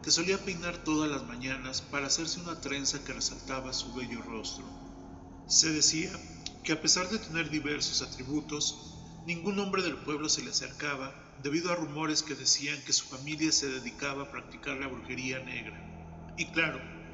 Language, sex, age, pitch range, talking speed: Spanish, male, 40-59, 135-155 Hz, 170 wpm